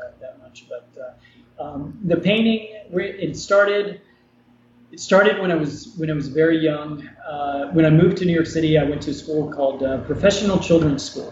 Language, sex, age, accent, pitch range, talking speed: English, male, 30-49, American, 135-170 Hz, 195 wpm